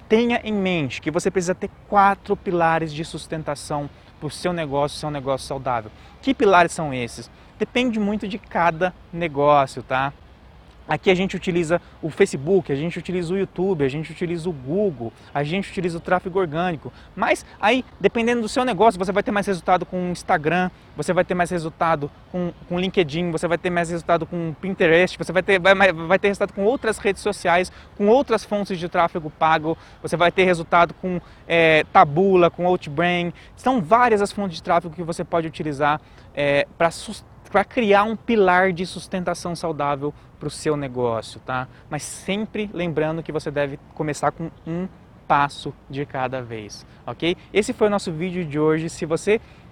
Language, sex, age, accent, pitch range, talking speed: Portuguese, male, 20-39, Brazilian, 155-195 Hz, 185 wpm